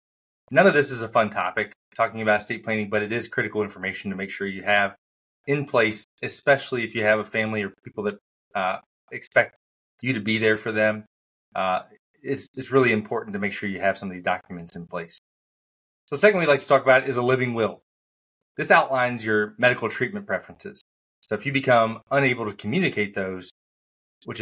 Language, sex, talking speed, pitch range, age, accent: English, male, 205 wpm, 95-120 Hz, 30-49, American